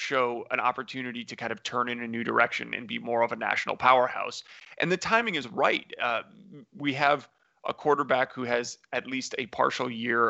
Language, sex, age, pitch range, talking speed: English, male, 30-49, 120-135 Hz, 205 wpm